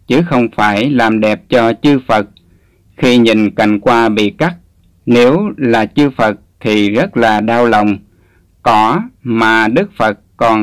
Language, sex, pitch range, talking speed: Vietnamese, male, 105-130 Hz, 160 wpm